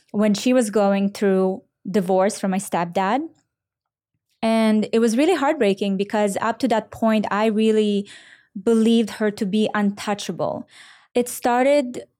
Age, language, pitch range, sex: 20-39, English, 195-225 Hz, female